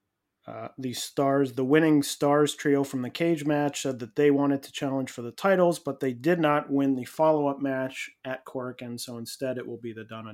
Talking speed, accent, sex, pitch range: 220 wpm, American, male, 130-160 Hz